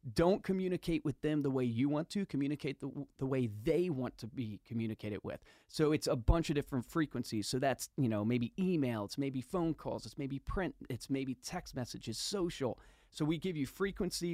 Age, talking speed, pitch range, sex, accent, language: 30-49, 205 wpm, 125-150 Hz, male, American, English